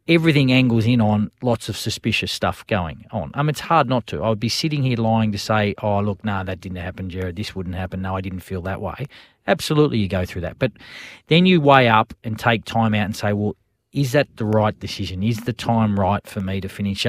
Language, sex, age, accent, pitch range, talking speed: English, male, 40-59, Australian, 100-120 Hz, 245 wpm